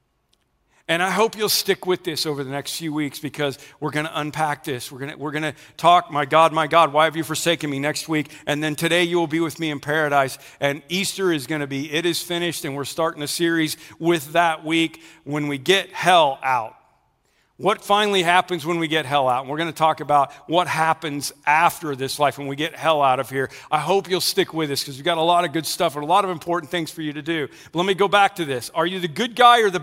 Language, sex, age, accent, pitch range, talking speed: English, male, 50-69, American, 155-200 Hz, 260 wpm